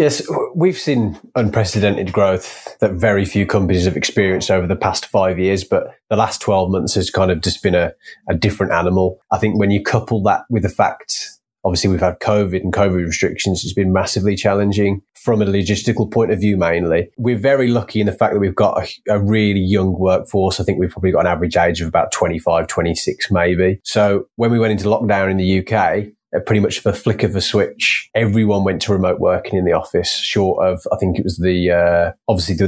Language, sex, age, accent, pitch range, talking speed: English, male, 20-39, British, 95-110 Hz, 220 wpm